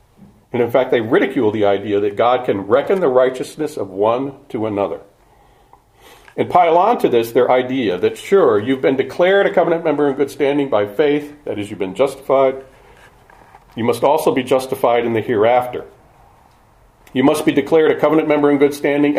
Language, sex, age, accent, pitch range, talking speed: English, male, 40-59, American, 125-155 Hz, 190 wpm